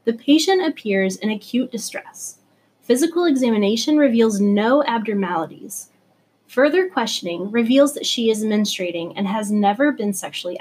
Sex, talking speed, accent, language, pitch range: female, 130 wpm, American, English, 210-285 Hz